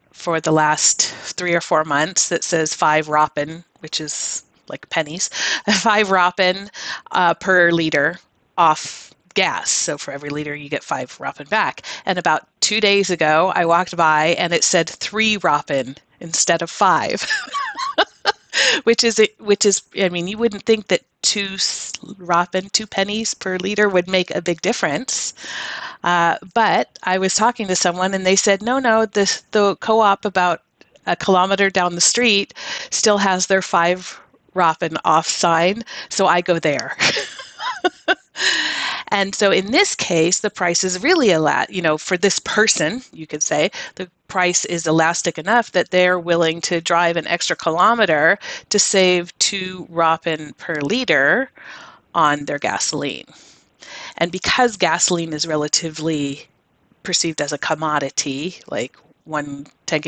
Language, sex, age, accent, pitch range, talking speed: English, female, 30-49, American, 160-200 Hz, 150 wpm